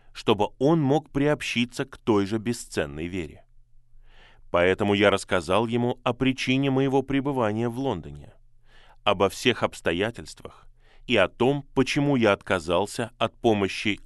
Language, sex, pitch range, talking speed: Russian, male, 100-125 Hz, 130 wpm